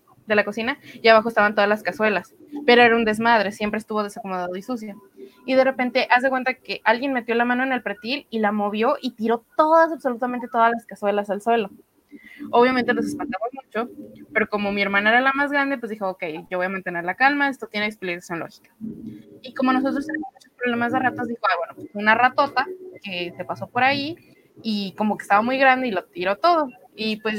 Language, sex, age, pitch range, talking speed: Spanish, female, 20-39, 210-260 Hz, 215 wpm